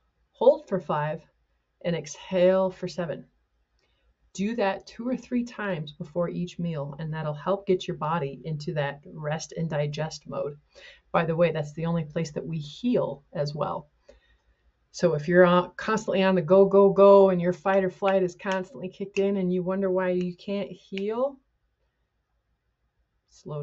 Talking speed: 170 wpm